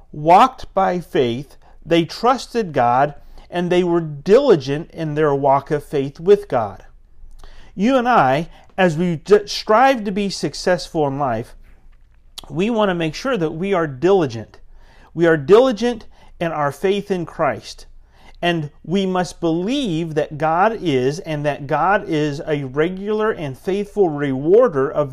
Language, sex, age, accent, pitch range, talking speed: English, male, 40-59, American, 140-190 Hz, 150 wpm